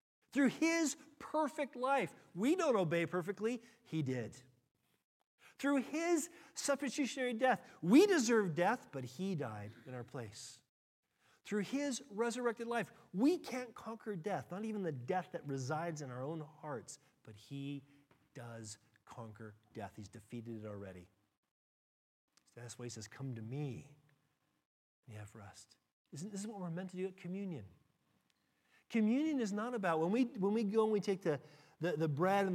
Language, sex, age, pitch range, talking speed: English, male, 40-59, 135-225 Hz, 160 wpm